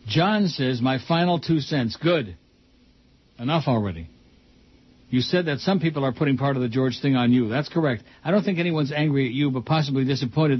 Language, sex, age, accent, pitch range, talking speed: English, male, 60-79, American, 120-155 Hz, 200 wpm